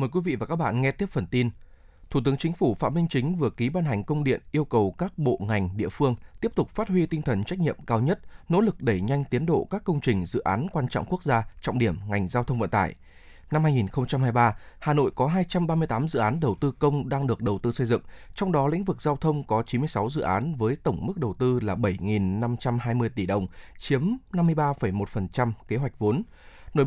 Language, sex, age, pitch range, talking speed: Vietnamese, male, 20-39, 110-155 Hz, 230 wpm